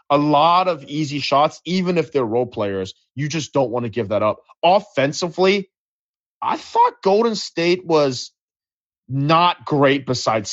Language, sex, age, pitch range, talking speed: English, male, 20-39, 120-155 Hz, 155 wpm